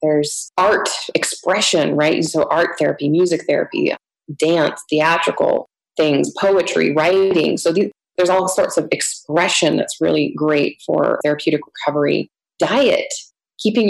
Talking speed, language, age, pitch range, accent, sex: 125 wpm, English, 20-39, 150-180 Hz, American, female